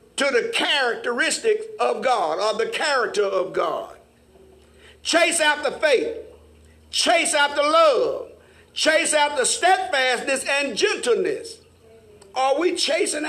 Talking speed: 110 wpm